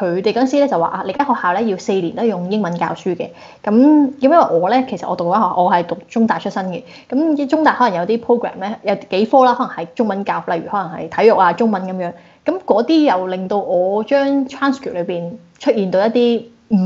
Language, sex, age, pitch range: Chinese, female, 20-39, 185-245 Hz